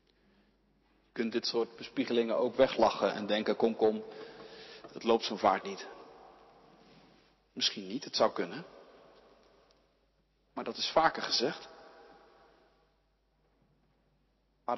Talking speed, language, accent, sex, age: 110 wpm, Dutch, Dutch, male, 40-59